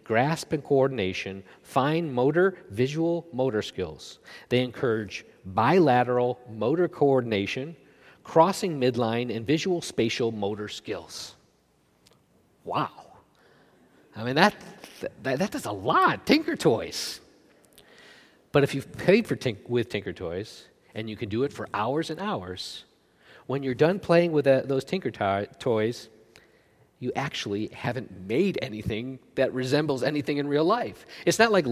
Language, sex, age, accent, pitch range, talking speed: English, male, 50-69, American, 120-165 Hz, 140 wpm